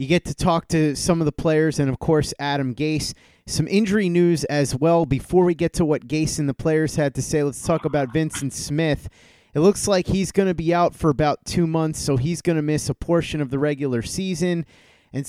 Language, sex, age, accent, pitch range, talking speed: English, male, 30-49, American, 140-170 Hz, 235 wpm